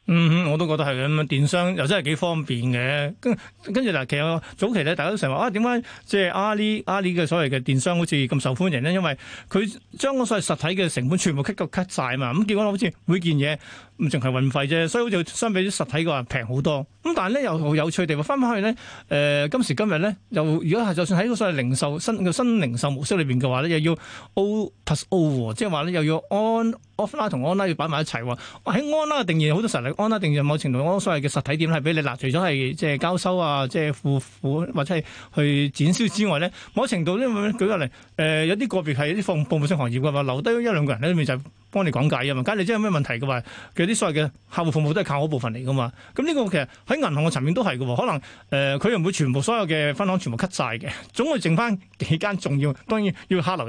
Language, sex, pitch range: Chinese, male, 145-200 Hz